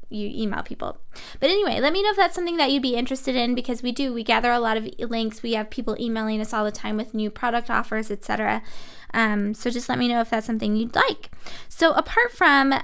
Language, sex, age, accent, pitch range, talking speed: English, female, 10-29, American, 230-275 Hz, 250 wpm